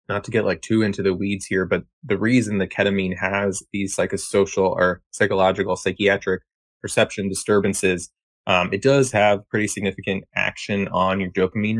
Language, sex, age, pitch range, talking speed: English, male, 20-39, 90-100 Hz, 170 wpm